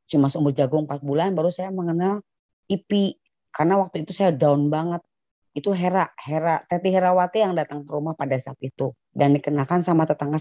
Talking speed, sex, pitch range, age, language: 185 wpm, female, 145-175 Hz, 30-49, Indonesian